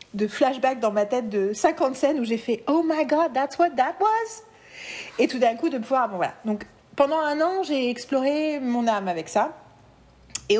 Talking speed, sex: 220 wpm, female